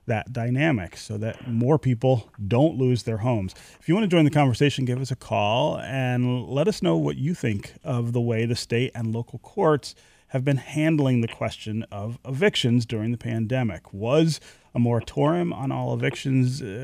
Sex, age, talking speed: male, 30-49, 185 wpm